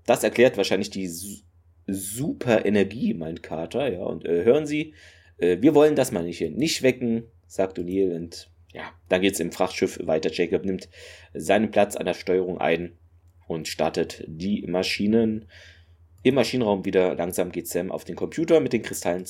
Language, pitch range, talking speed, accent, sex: German, 85-110 Hz, 170 wpm, German, male